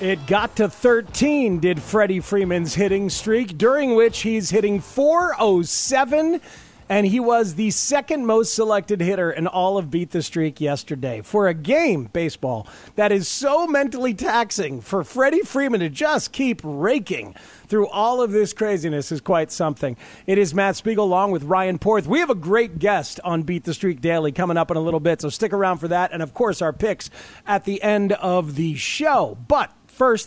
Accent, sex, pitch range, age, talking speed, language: American, male, 165-225 Hz, 40-59, 190 wpm, English